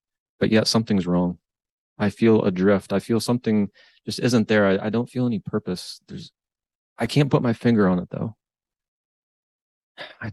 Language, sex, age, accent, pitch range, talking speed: English, male, 30-49, American, 95-120 Hz, 170 wpm